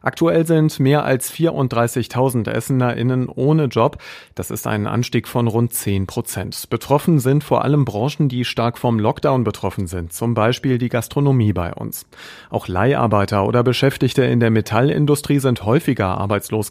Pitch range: 105-135 Hz